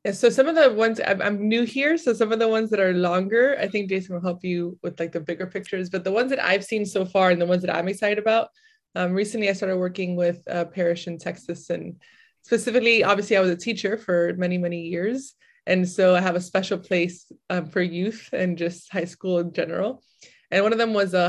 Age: 20-39